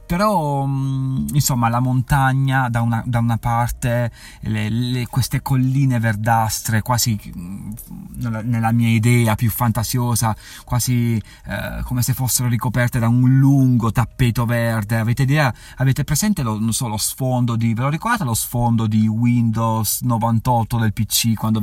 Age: 30-49